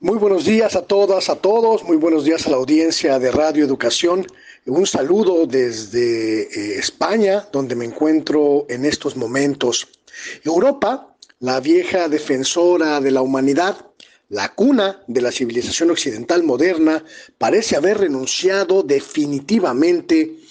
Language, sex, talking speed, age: Spanish, male, 130 wpm, 40-59